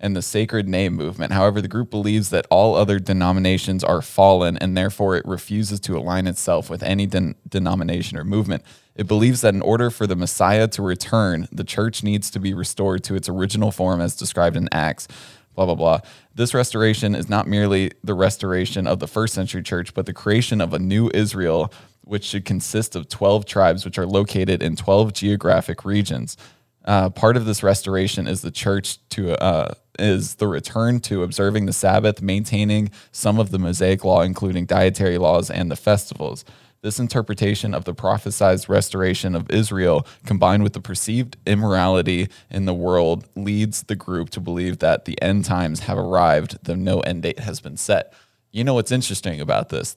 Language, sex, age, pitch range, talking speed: English, male, 20-39, 90-105 Hz, 185 wpm